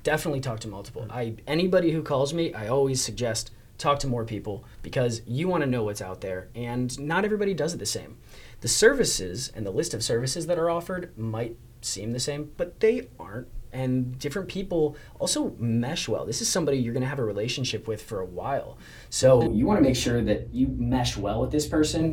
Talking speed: 215 wpm